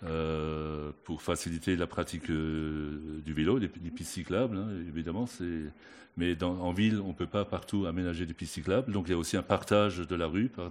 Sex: male